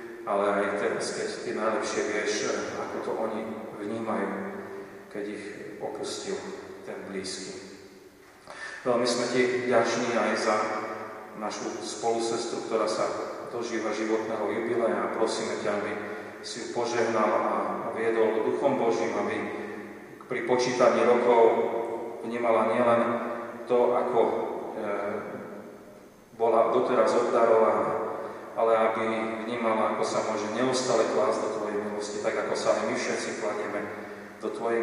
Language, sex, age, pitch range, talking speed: Slovak, male, 40-59, 110-120 Hz, 115 wpm